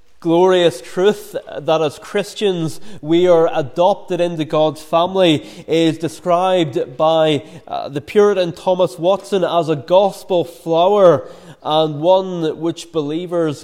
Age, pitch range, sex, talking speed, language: 20-39, 160-190 Hz, male, 120 wpm, English